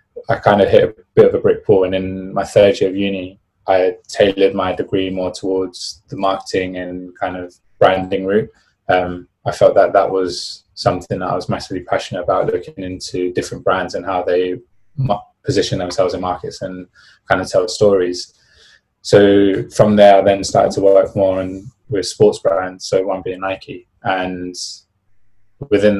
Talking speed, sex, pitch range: 180 wpm, male, 95-105 Hz